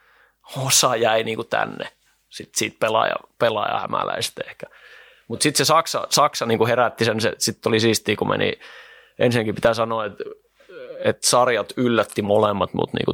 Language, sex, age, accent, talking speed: Finnish, male, 20-39, native, 150 wpm